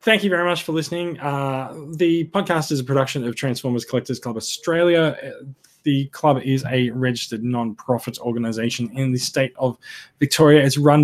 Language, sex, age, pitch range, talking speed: English, male, 20-39, 120-145 Hz, 170 wpm